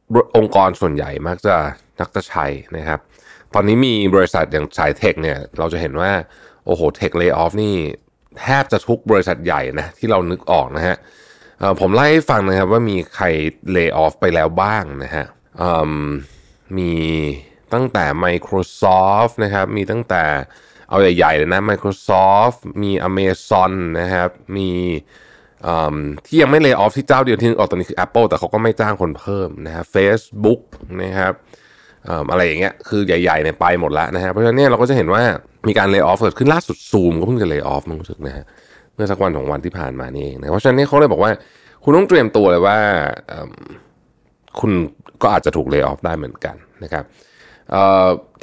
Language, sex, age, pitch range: Thai, male, 20-39, 85-115 Hz